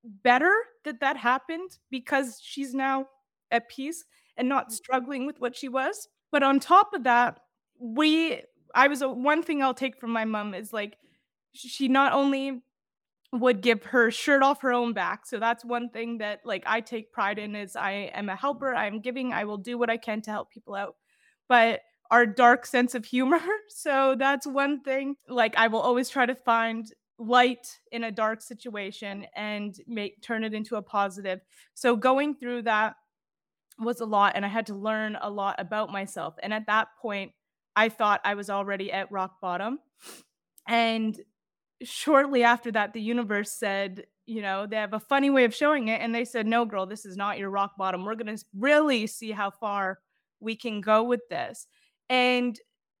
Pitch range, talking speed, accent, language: 210-265 Hz, 195 wpm, American, English